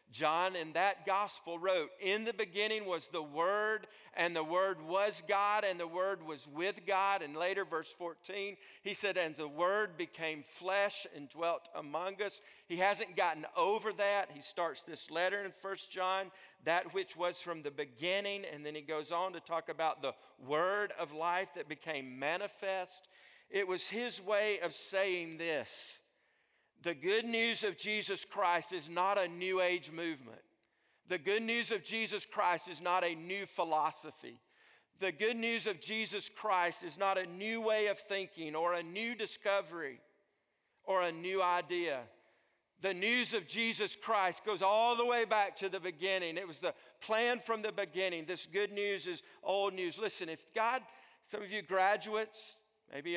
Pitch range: 175-205 Hz